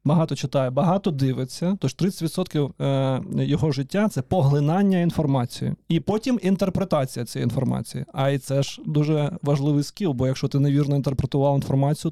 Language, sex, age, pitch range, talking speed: Ukrainian, male, 20-39, 130-160 Hz, 145 wpm